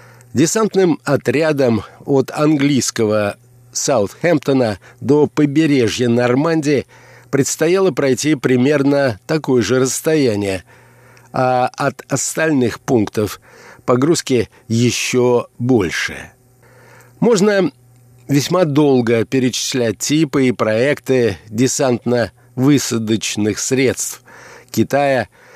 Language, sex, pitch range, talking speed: Russian, male, 115-135 Hz, 75 wpm